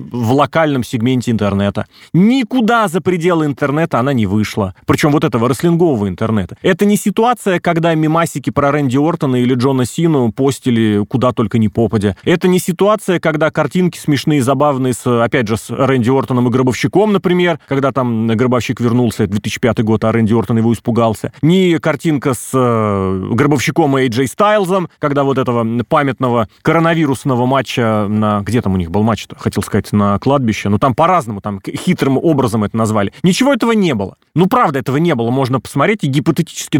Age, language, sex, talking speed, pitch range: 30-49, Russian, male, 175 wpm, 120-170 Hz